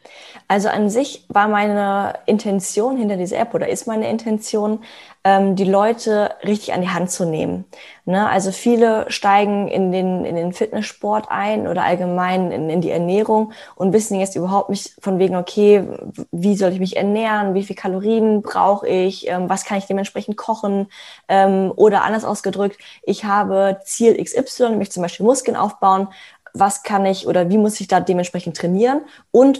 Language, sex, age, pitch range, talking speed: German, female, 20-39, 180-210 Hz, 160 wpm